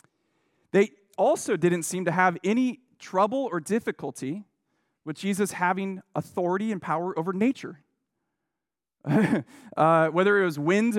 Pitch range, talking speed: 155-215 Hz, 125 wpm